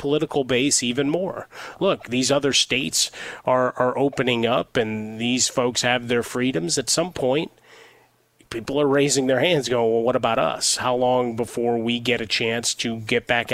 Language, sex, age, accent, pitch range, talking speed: English, male, 30-49, American, 120-140 Hz, 180 wpm